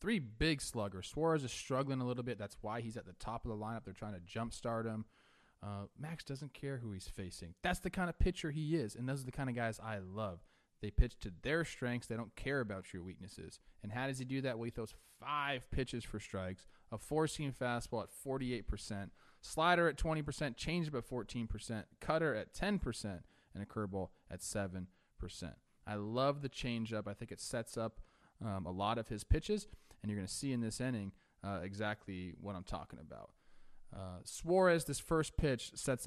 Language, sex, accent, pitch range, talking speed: English, male, American, 100-135 Hz, 205 wpm